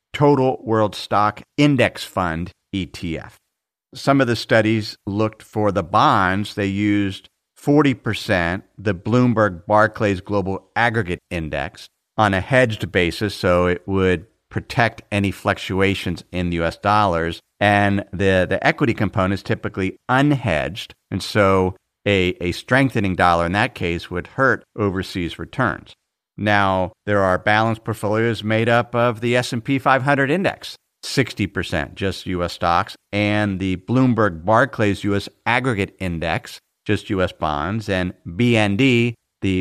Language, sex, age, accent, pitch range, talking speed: English, male, 50-69, American, 90-115 Hz, 130 wpm